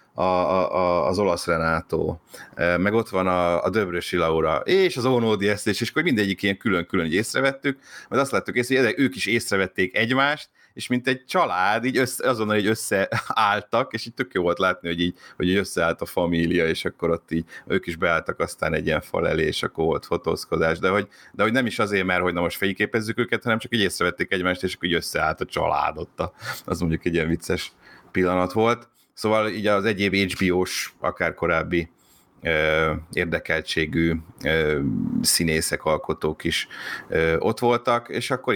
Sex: male